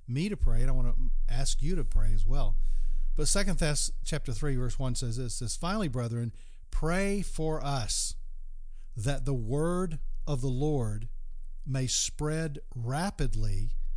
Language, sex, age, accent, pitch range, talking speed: English, male, 40-59, American, 110-150 Hz, 165 wpm